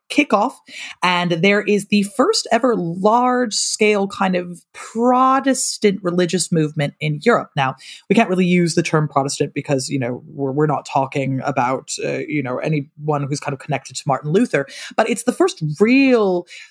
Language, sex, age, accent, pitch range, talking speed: English, female, 20-39, American, 150-210 Hz, 170 wpm